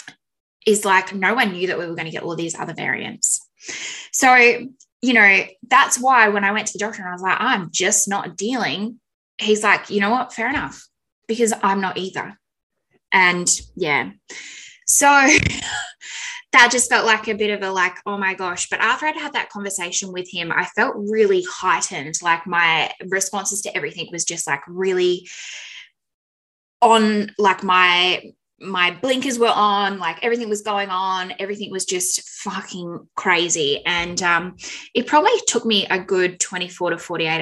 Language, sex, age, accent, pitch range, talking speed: English, female, 10-29, Australian, 175-215 Hz, 175 wpm